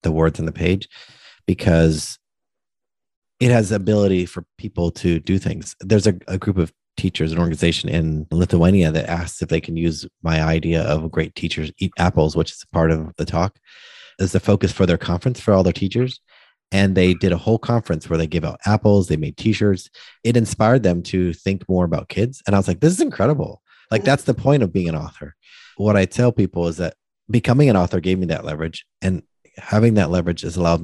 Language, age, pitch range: English, 30-49, 80-100 Hz